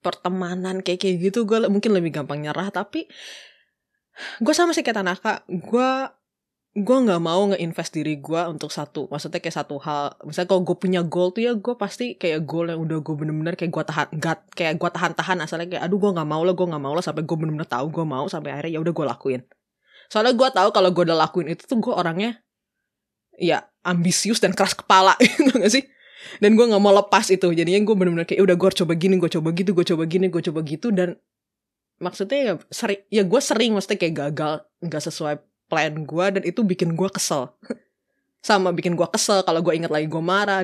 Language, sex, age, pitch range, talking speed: Indonesian, female, 20-39, 160-200 Hz, 215 wpm